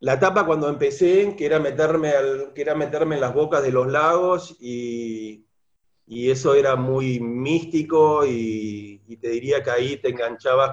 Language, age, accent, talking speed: Spanish, 40-59, Argentinian, 175 wpm